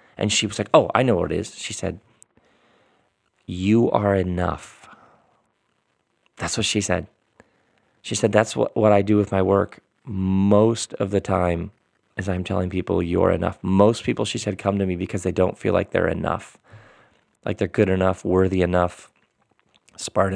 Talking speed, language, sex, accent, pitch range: 175 wpm, English, male, American, 95-110 Hz